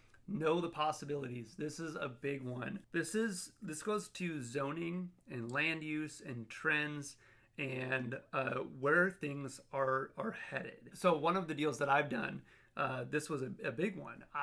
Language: English